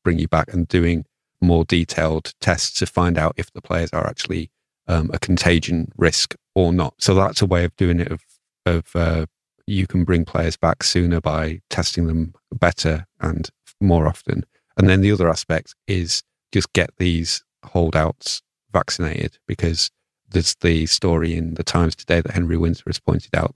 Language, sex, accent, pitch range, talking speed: English, male, British, 80-90 Hz, 180 wpm